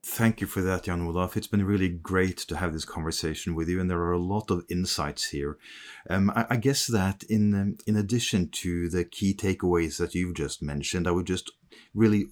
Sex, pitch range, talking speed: male, 85-105 Hz, 210 wpm